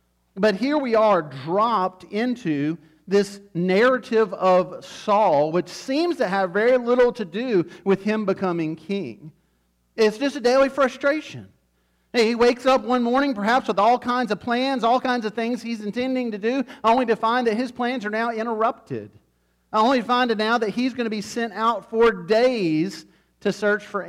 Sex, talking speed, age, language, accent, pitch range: male, 180 wpm, 40-59, English, American, 145-220 Hz